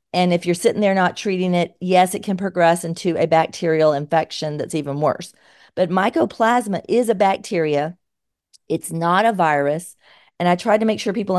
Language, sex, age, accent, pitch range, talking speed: English, female, 40-59, American, 170-205 Hz, 185 wpm